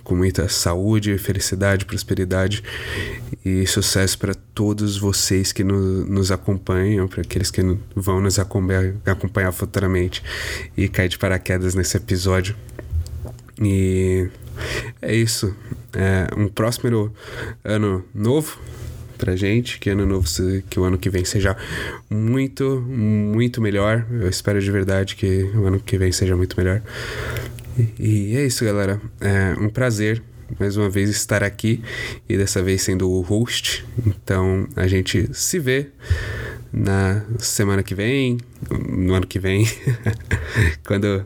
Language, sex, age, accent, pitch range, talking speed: Portuguese, male, 20-39, Brazilian, 95-115 Hz, 135 wpm